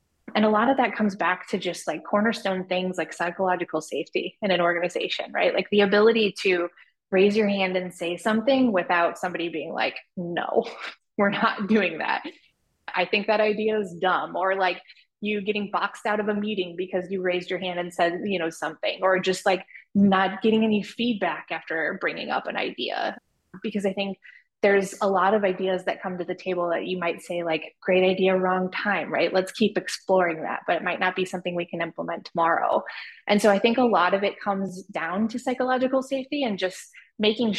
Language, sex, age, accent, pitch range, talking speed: English, female, 20-39, American, 180-210 Hz, 205 wpm